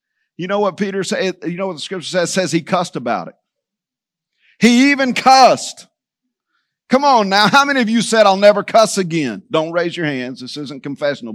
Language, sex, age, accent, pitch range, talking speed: English, male, 50-69, American, 150-200 Hz, 200 wpm